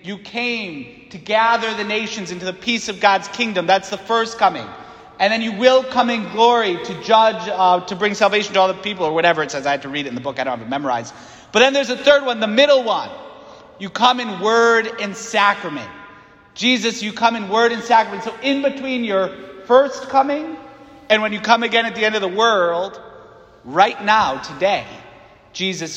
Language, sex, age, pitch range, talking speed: English, male, 40-59, 190-240 Hz, 215 wpm